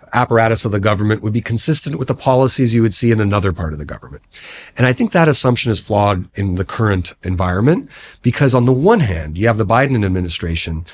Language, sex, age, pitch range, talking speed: English, male, 40-59, 95-120 Hz, 220 wpm